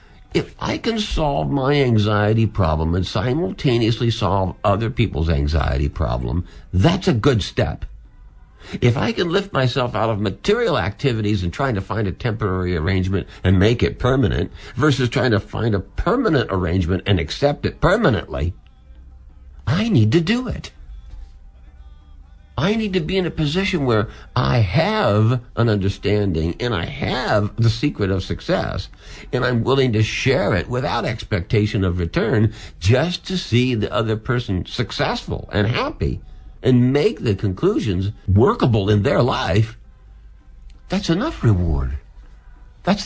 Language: English